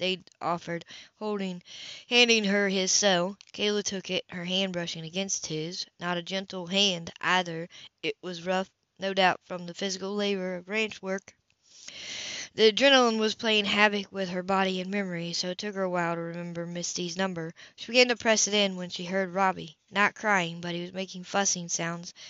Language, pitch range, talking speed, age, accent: English, 180-205 Hz, 185 wpm, 20-39, American